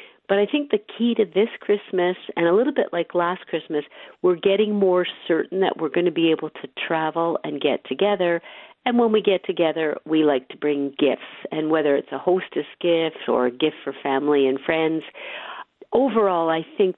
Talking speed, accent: 200 wpm, American